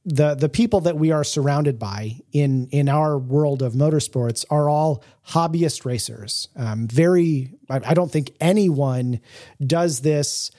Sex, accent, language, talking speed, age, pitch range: male, American, English, 145 wpm, 30-49, 130-155 Hz